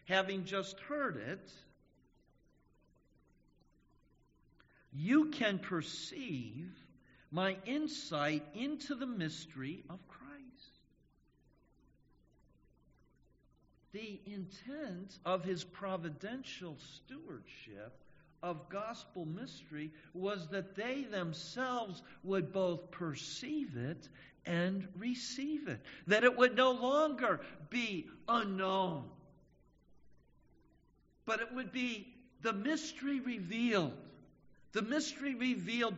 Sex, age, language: male, 50-69, English